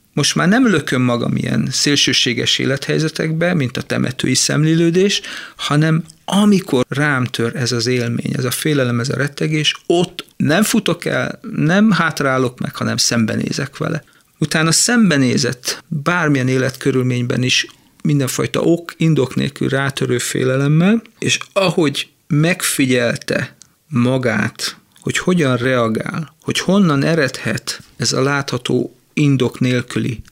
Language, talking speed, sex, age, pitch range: Hungarian, 120 wpm, male, 40-59, 120-160 Hz